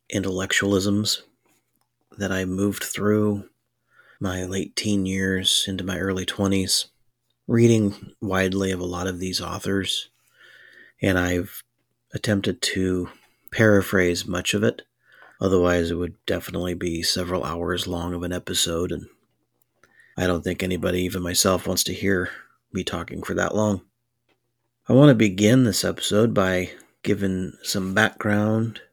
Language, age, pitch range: English, 30-49, 90-105 Hz